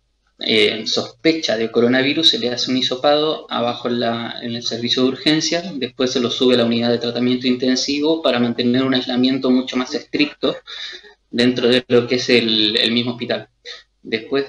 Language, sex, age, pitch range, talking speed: Spanish, male, 20-39, 120-135 Hz, 180 wpm